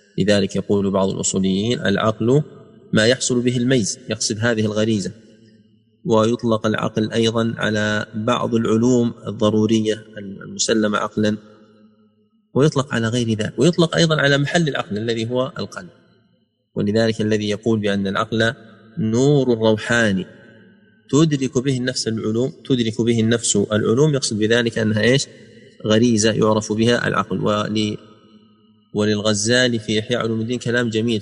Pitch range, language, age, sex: 105-125 Hz, Arabic, 30-49, male